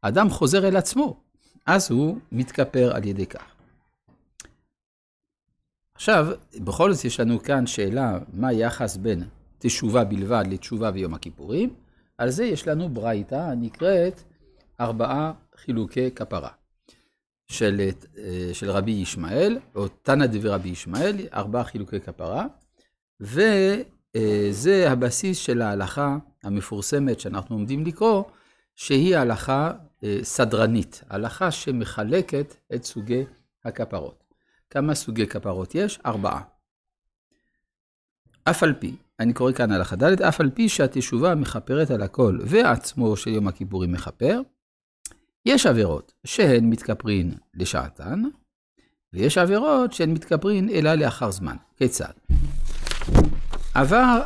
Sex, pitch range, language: male, 100-160 Hz, Hebrew